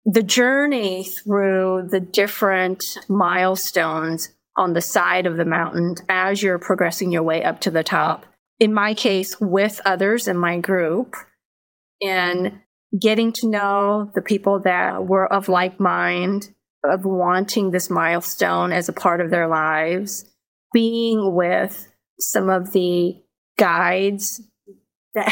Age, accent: 30-49, American